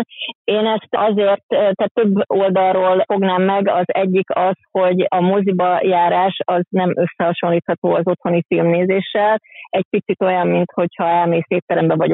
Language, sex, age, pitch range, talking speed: Hungarian, female, 30-49, 175-195 Hz, 135 wpm